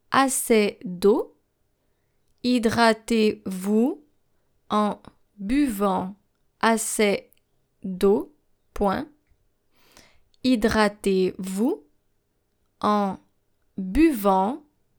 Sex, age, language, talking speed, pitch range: female, 20-39, English, 45 wpm, 200-255 Hz